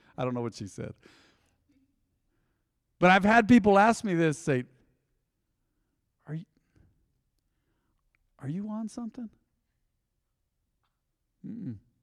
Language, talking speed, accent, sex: English, 105 wpm, American, male